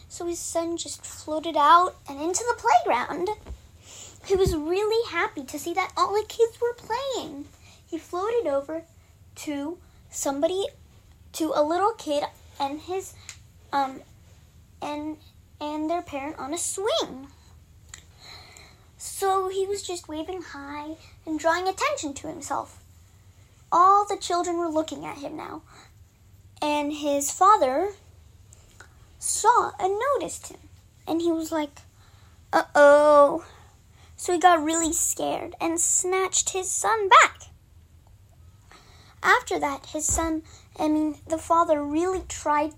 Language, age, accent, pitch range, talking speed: Hindi, 10-29, American, 280-360 Hz, 130 wpm